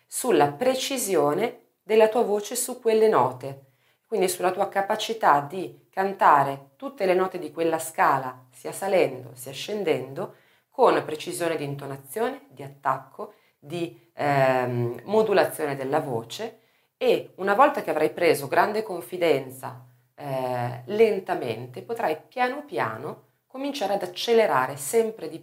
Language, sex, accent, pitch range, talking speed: Italian, female, native, 140-220 Hz, 125 wpm